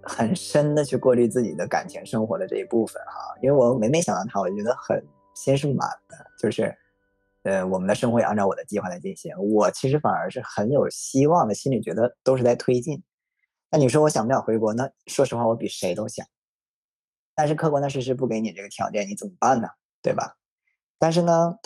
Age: 20-39